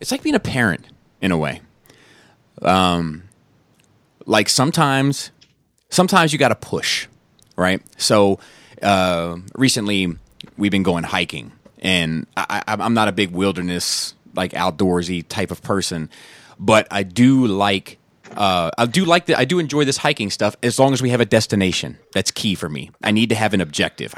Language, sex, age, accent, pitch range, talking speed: English, male, 30-49, American, 90-125 Hz, 165 wpm